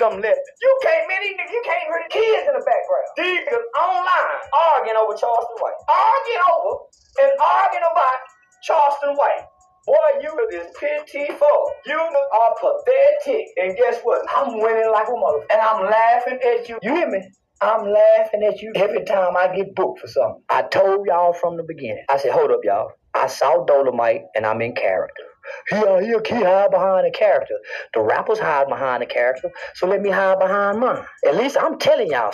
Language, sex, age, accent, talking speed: English, male, 30-49, American, 185 wpm